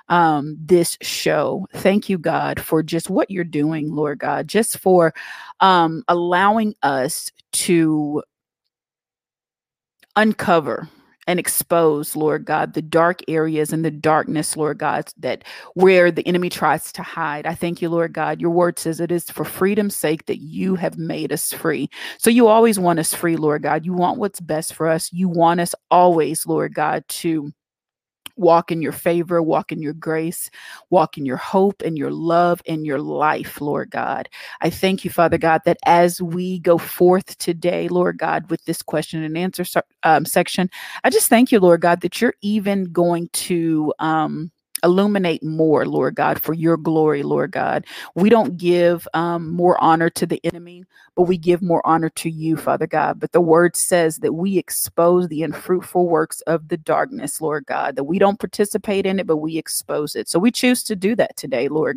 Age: 30-49